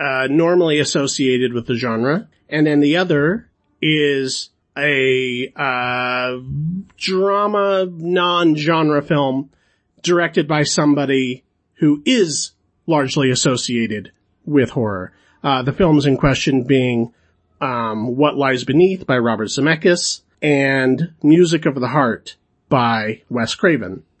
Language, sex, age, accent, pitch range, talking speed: English, male, 40-59, American, 125-160 Hz, 115 wpm